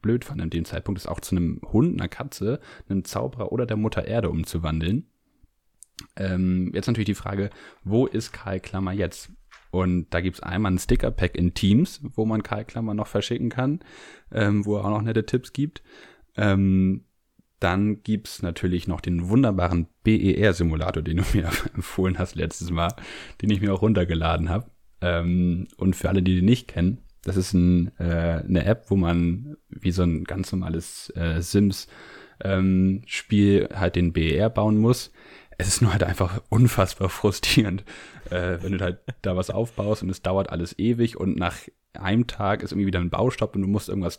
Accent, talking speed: German, 185 wpm